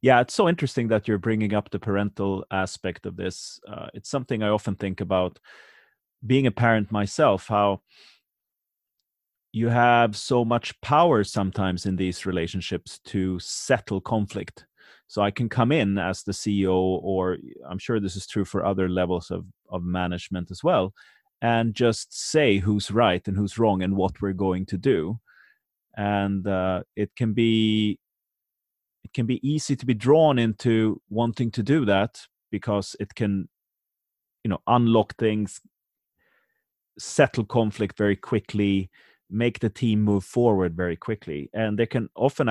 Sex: male